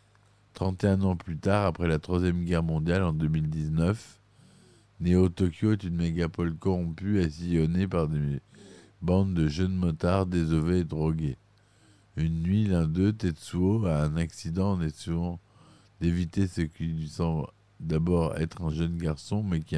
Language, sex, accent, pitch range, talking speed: French, male, French, 80-100 Hz, 145 wpm